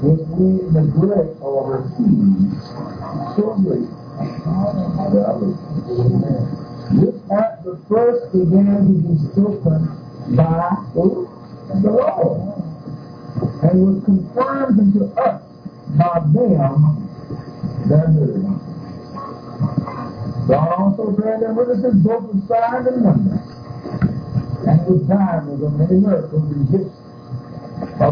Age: 50-69